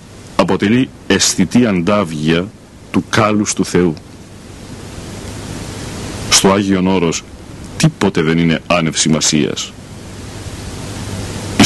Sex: male